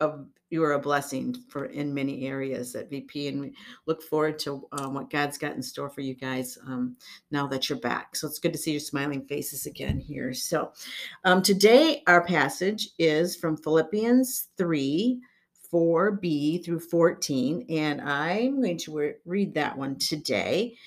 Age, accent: 50-69, American